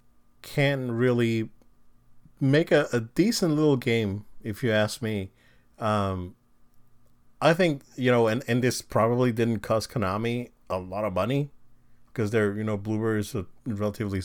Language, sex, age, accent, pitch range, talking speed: English, male, 30-49, American, 105-130 Hz, 150 wpm